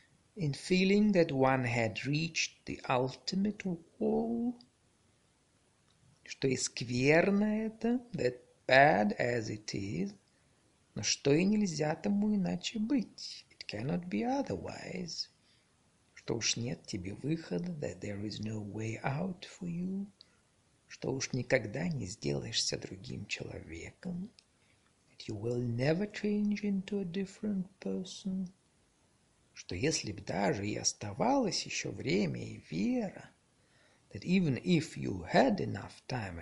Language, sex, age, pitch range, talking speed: Russian, male, 50-69, 120-190 Hz, 90 wpm